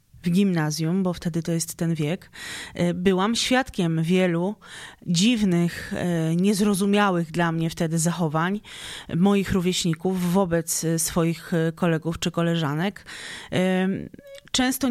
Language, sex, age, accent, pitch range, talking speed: Polish, female, 20-39, native, 175-215 Hz, 100 wpm